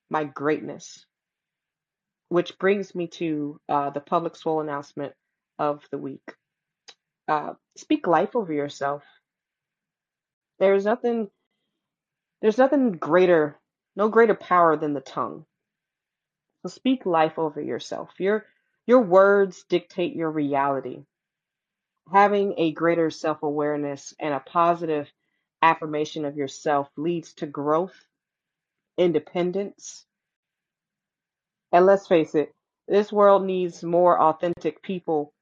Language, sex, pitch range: English, female, 155-190 Hz